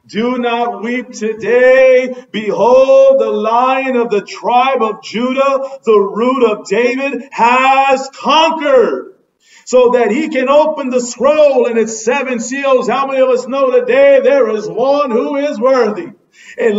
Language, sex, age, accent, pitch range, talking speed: English, male, 40-59, American, 205-280 Hz, 150 wpm